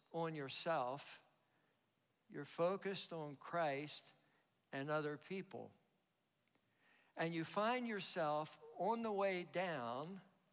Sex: male